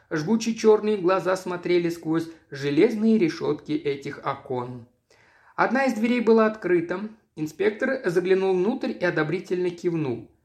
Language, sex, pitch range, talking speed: Russian, male, 165-225 Hz, 115 wpm